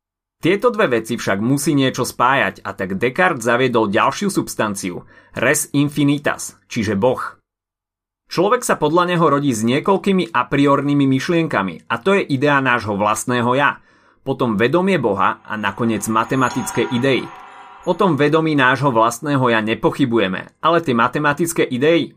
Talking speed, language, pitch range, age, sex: 140 wpm, Slovak, 110-165 Hz, 30-49, male